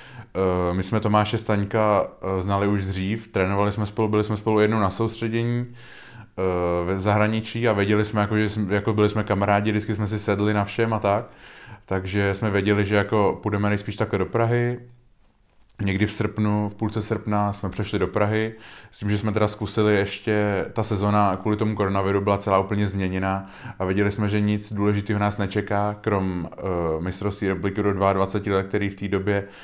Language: Czech